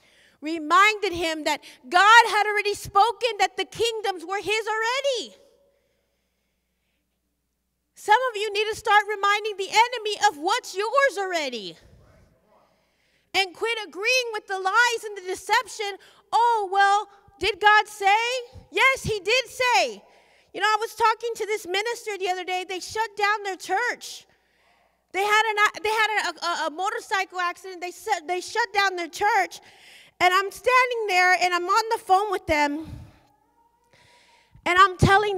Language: English